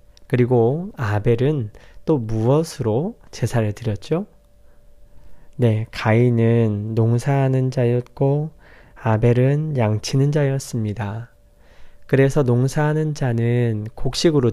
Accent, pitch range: native, 110-140 Hz